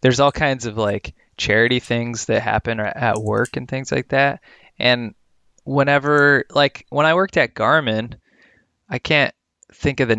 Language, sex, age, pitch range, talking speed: English, male, 20-39, 110-125 Hz, 165 wpm